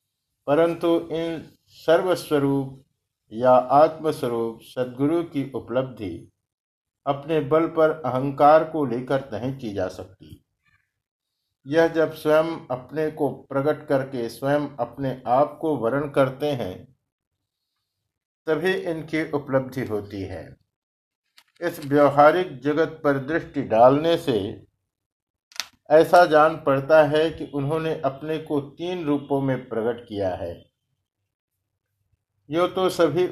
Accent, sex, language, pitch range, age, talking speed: native, male, Hindi, 115-155 Hz, 50-69, 110 wpm